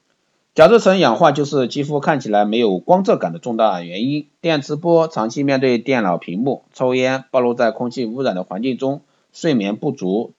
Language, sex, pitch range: Chinese, male, 120-165 Hz